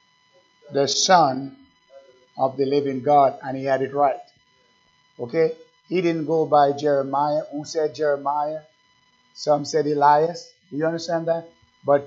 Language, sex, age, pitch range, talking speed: English, male, 50-69, 145-170 Hz, 140 wpm